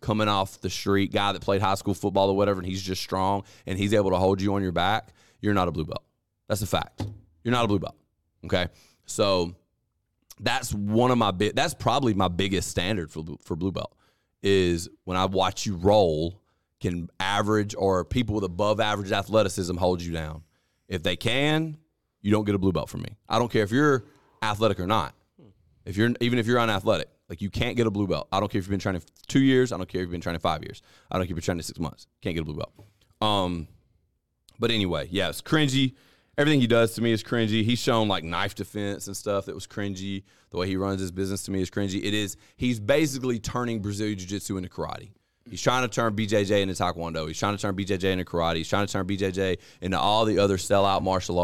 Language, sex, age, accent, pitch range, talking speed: English, male, 30-49, American, 90-110 Hz, 235 wpm